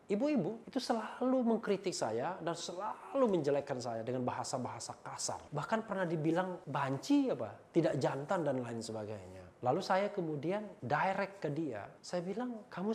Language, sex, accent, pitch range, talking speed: Indonesian, male, native, 125-180 Hz, 145 wpm